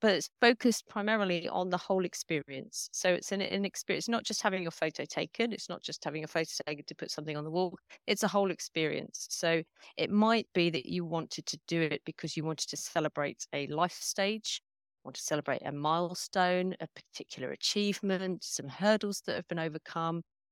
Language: English